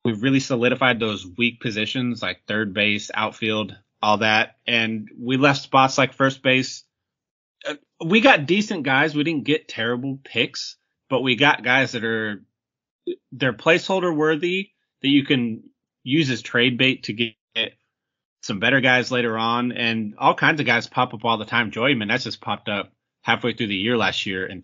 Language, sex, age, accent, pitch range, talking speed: English, male, 30-49, American, 105-130 Hz, 175 wpm